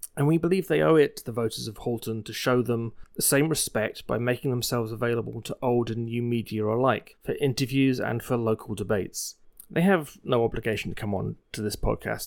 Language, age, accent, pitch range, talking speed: English, 30-49, British, 110-140 Hz, 210 wpm